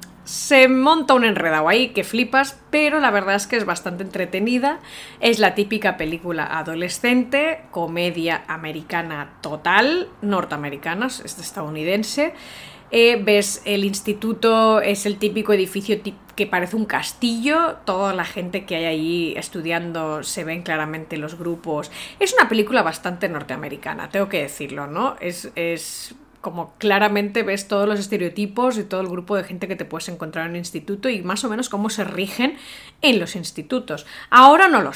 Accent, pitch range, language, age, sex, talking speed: Spanish, 170-225 Hz, Spanish, 20-39, female, 160 wpm